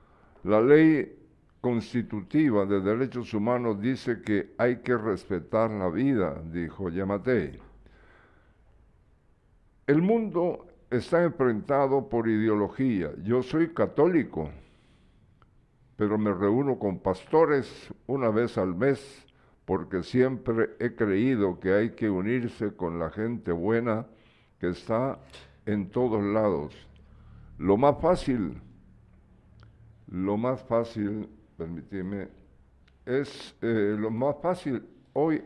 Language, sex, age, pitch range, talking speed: Spanish, male, 60-79, 100-130 Hz, 105 wpm